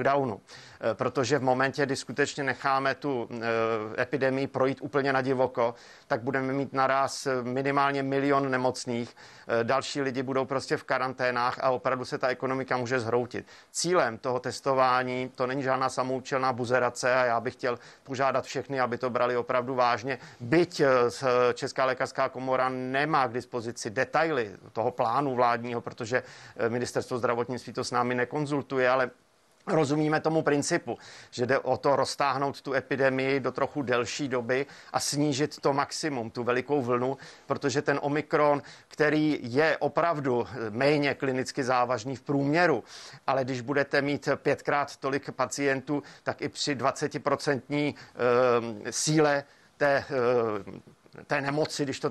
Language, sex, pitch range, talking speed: Czech, male, 125-140 Hz, 135 wpm